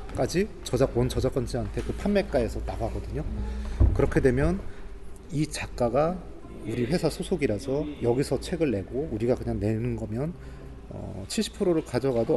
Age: 30-49